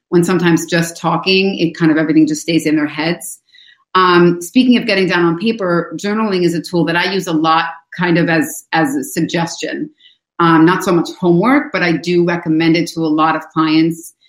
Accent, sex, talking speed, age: American, female, 210 wpm, 30-49